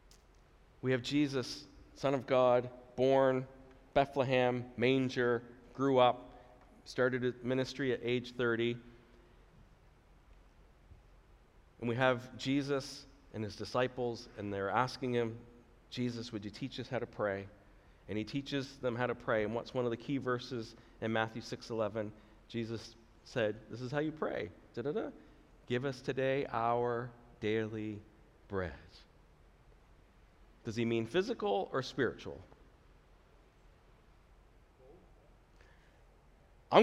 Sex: male